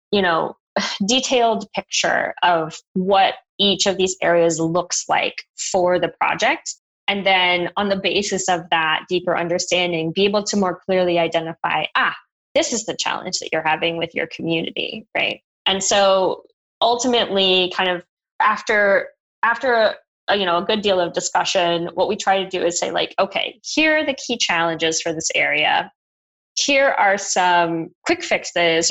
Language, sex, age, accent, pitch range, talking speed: English, female, 20-39, American, 175-230 Hz, 160 wpm